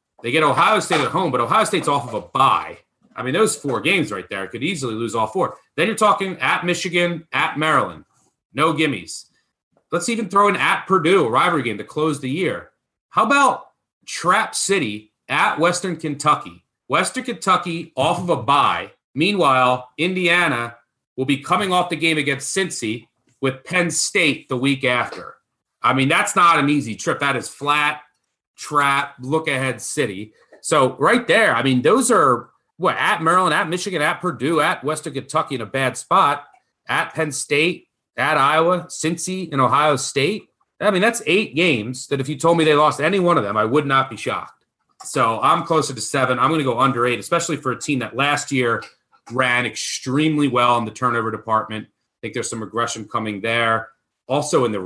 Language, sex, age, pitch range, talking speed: English, male, 30-49, 120-170 Hz, 190 wpm